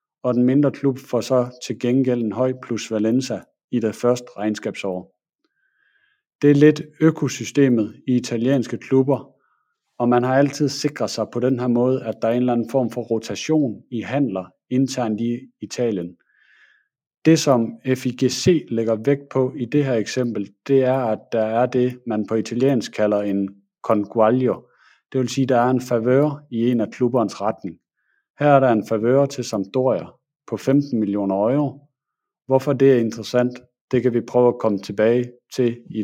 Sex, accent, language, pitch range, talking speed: male, native, Danish, 115-140 Hz, 175 wpm